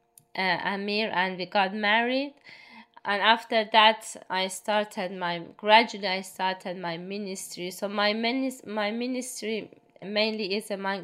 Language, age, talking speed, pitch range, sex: English, 20-39, 135 wpm, 180-210 Hz, female